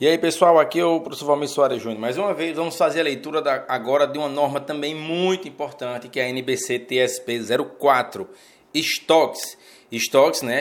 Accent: Brazilian